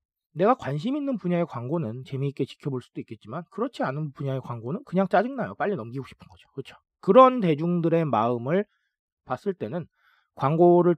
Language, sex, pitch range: Korean, male, 125-180 Hz